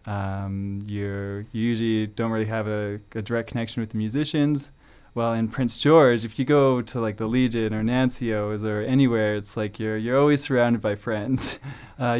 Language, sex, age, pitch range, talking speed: English, male, 20-39, 105-120 Hz, 190 wpm